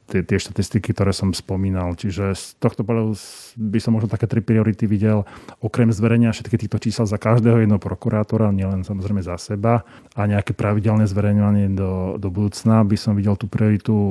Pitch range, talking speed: 95-110 Hz, 175 wpm